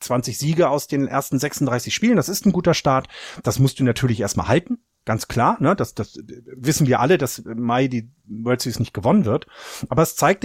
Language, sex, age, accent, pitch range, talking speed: German, male, 40-59, German, 120-155 Hz, 220 wpm